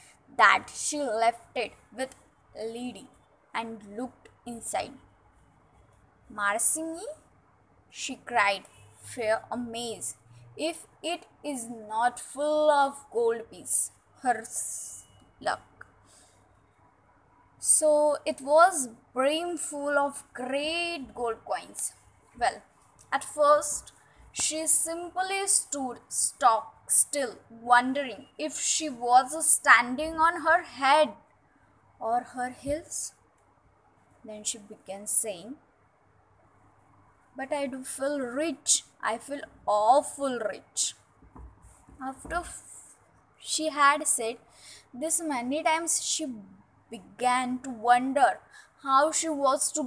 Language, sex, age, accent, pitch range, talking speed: English, female, 10-29, Indian, 240-310 Hz, 95 wpm